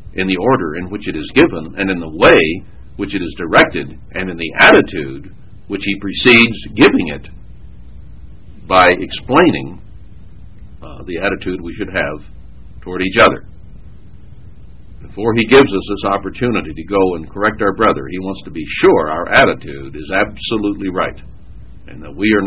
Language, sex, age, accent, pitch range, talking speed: English, male, 60-79, American, 85-110 Hz, 165 wpm